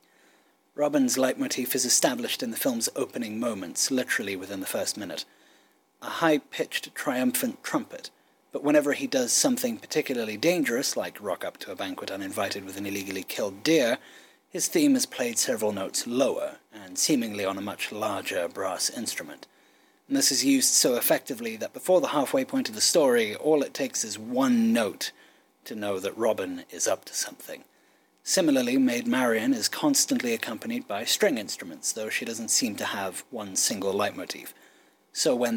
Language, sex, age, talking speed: English, male, 30-49, 170 wpm